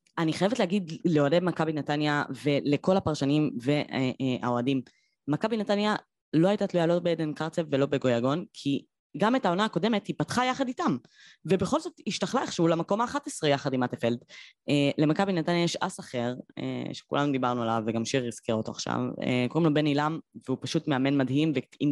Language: Hebrew